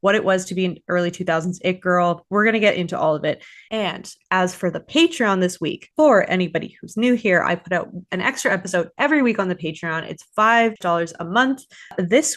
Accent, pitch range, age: American, 175-235 Hz, 20-39